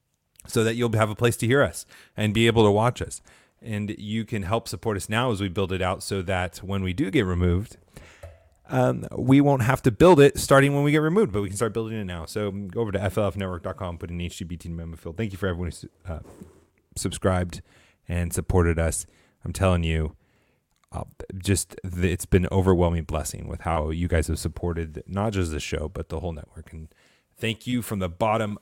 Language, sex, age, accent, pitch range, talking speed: English, male, 30-49, American, 85-125 Hz, 220 wpm